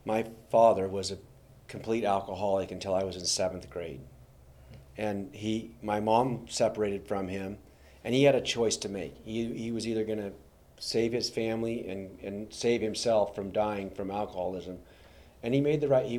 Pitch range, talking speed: 95-115 Hz, 180 wpm